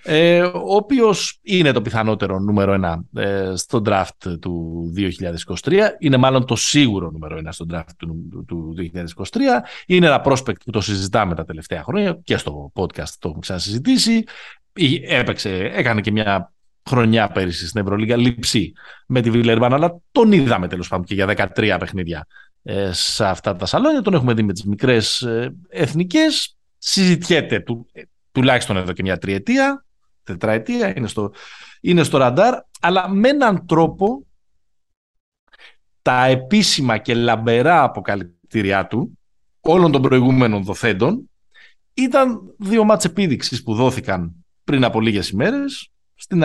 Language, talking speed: Greek, 135 wpm